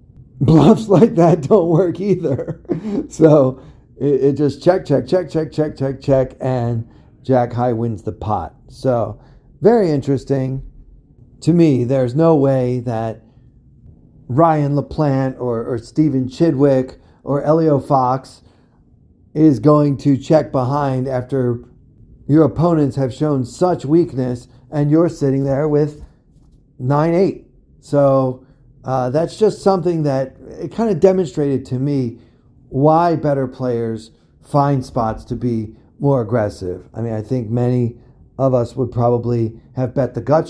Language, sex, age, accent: English, male, 40-59, American